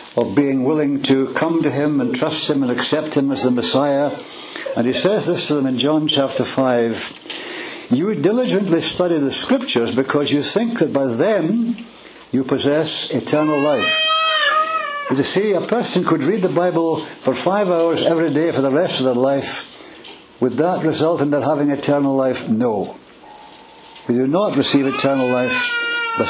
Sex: male